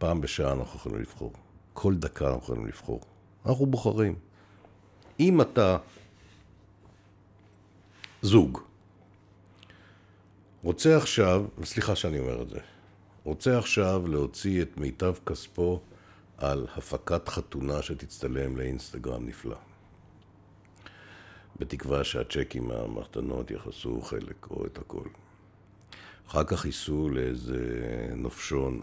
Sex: male